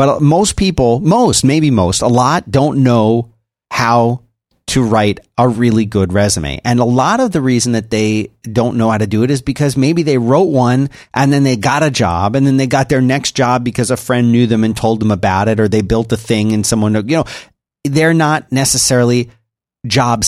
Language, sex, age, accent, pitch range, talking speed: English, male, 40-59, American, 110-140 Hz, 215 wpm